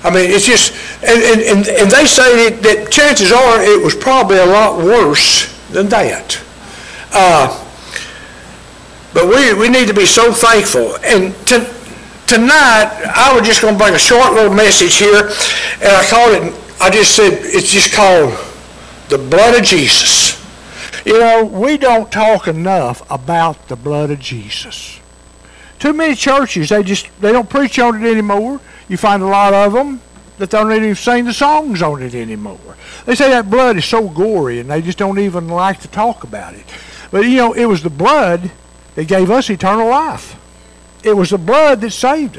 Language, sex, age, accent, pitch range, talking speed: English, male, 60-79, American, 175-235 Hz, 185 wpm